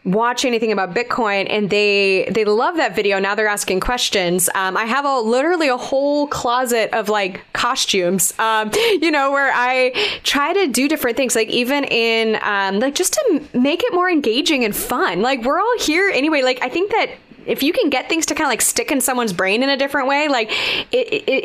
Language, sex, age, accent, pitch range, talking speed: English, female, 20-39, American, 210-290 Hz, 215 wpm